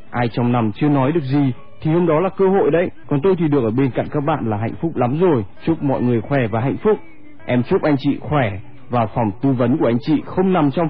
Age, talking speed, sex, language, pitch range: 20-39, 275 wpm, male, Vietnamese, 120-165 Hz